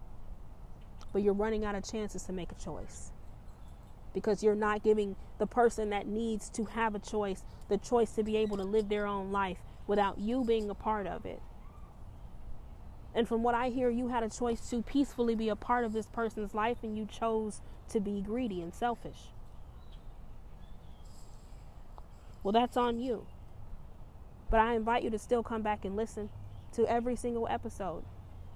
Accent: American